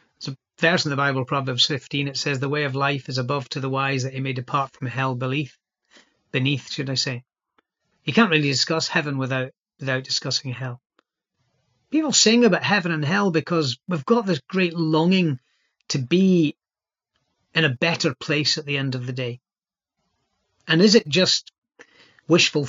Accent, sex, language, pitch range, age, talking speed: British, male, English, 135-165 Hz, 40-59, 175 wpm